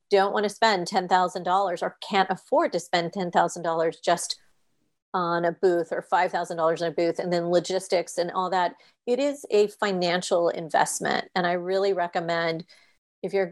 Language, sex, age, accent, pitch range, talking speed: English, female, 40-59, American, 175-200 Hz, 165 wpm